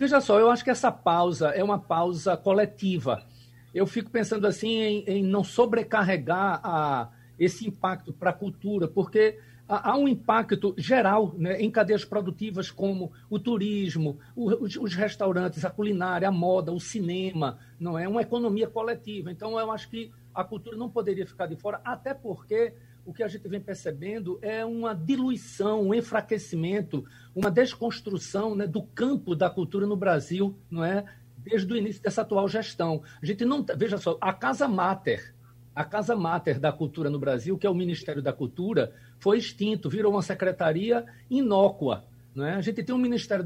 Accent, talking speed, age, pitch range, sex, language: Brazilian, 175 wpm, 60-79, 165-215 Hz, male, Portuguese